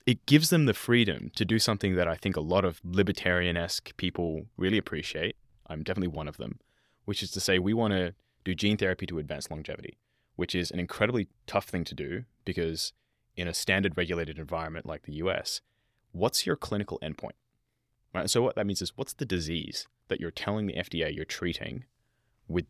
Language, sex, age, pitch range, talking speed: English, male, 20-39, 90-110 Hz, 195 wpm